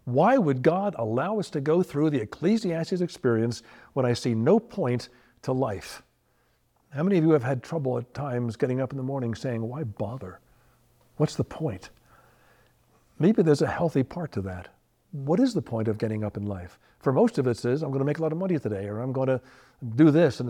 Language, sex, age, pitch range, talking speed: English, male, 60-79, 115-155 Hz, 220 wpm